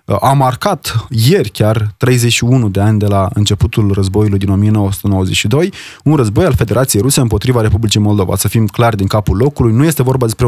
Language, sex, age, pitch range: Romanian, male, 20-39, 105-130 Hz